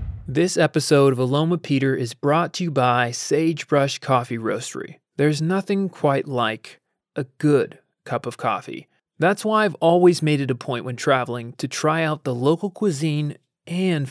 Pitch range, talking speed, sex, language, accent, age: 135-170 Hz, 165 wpm, male, English, American, 30-49